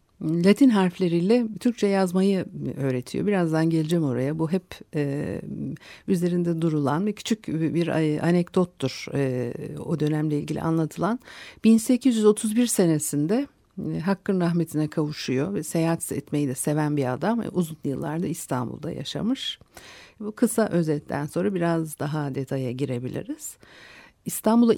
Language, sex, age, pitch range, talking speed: Turkish, female, 60-79, 150-205 Hz, 115 wpm